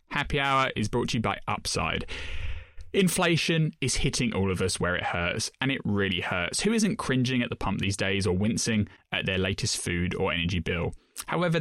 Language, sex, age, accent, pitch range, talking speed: English, male, 10-29, British, 100-145 Hz, 200 wpm